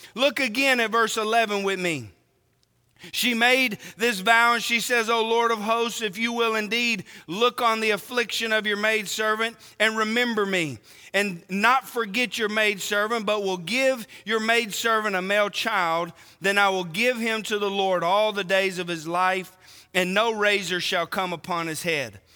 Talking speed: 180 wpm